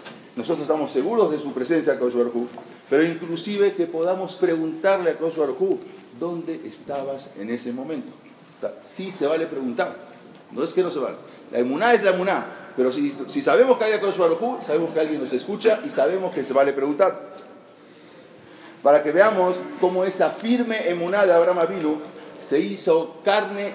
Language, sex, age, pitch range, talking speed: English, male, 40-59, 130-200 Hz, 175 wpm